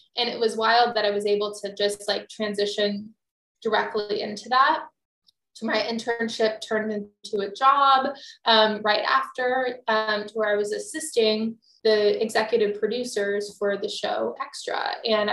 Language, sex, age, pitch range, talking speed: English, female, 10-29, 210-245 Hz, 155 wpm